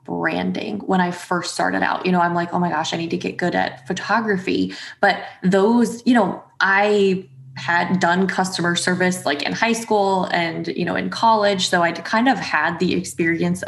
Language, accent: English, American